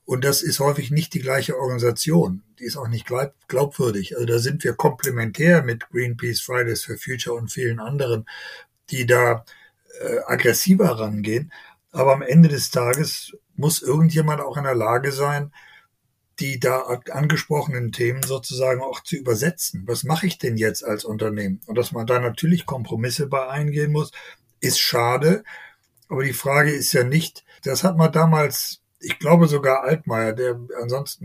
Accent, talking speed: German, 165 wpm